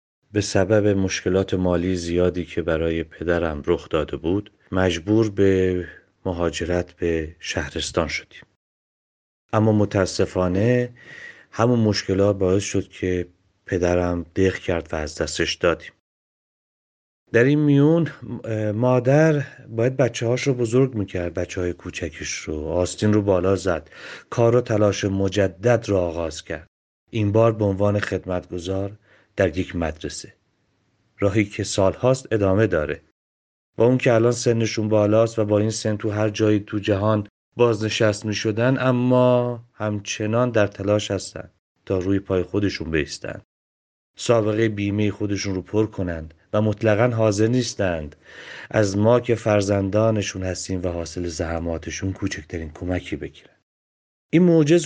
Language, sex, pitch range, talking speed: Persian, male, 90-110 Hz, 135 wpm